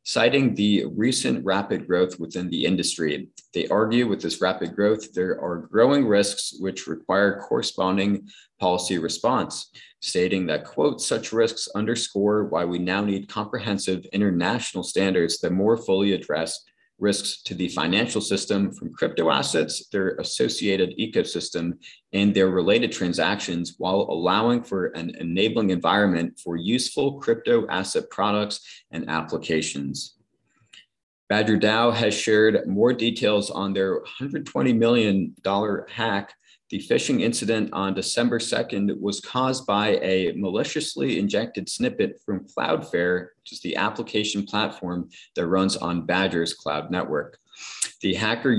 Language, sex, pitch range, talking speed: English, male, 95-110 Hz, 130 wpm